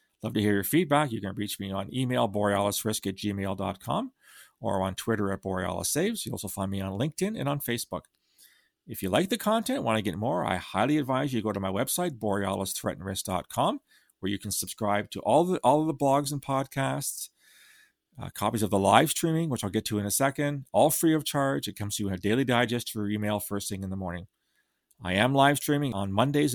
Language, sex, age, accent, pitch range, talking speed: English, male, 40-59, American, 100-135 Hz, 225 wpm